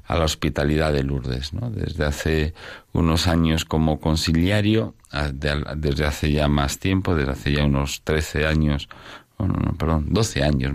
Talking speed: 155 wpm